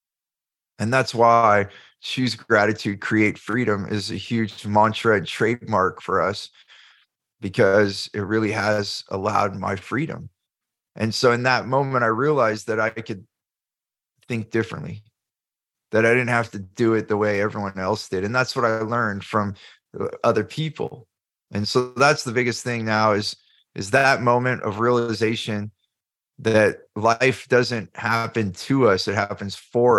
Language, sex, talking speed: English, male, 150 wpm